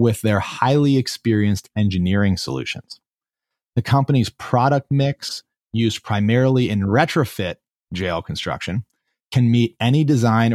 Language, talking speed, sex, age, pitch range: English, 115 wpm, male, 30-49, 95-120 Hz